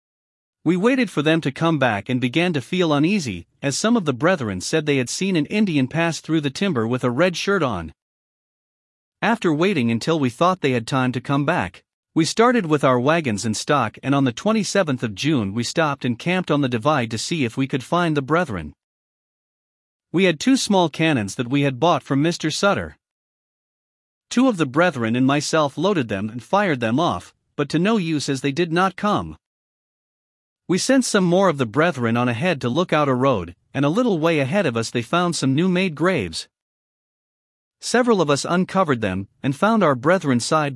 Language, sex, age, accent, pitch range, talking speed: English, male, 40-59, American, 125-180 Hz, 205 wpm